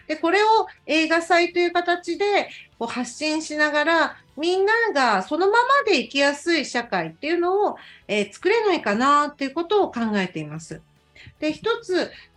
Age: 40-59